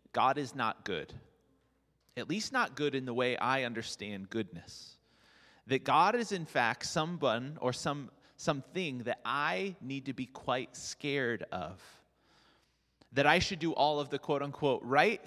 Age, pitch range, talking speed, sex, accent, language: 30-49, 125-160 Hz, 160 wpm, male, American, English